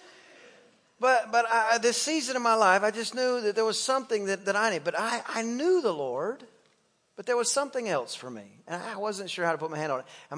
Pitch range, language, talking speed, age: 150-215 Hz, English, 255 wpm, 40-59